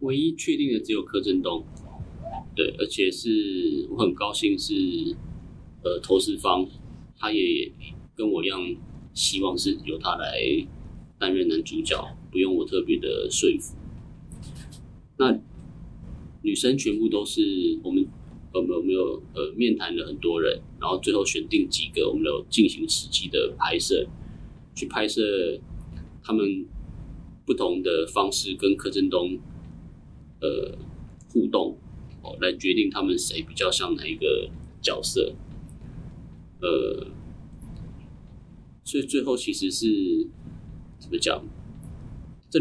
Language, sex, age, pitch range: Japanese, male, 30-49, 315-375 Hz